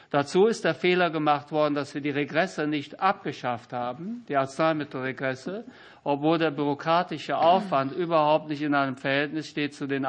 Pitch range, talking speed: 140-160 Hz, 160 wpm